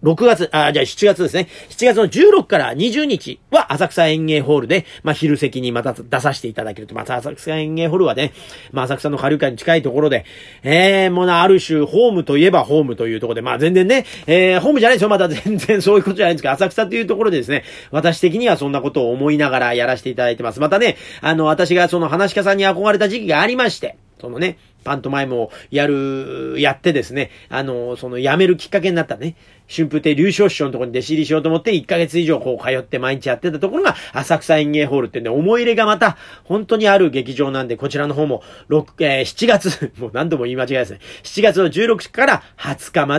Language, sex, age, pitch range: Japanese, male, 40-59, 135-195 Hz